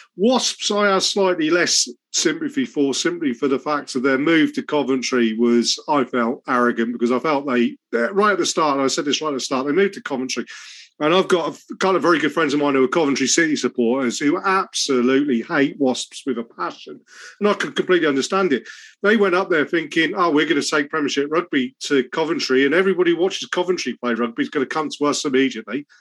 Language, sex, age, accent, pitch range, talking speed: English, male, 40-59, British, 140-205 Hz, 225 wpm